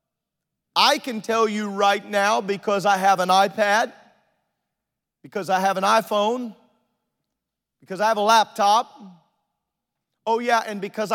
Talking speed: 135 wpm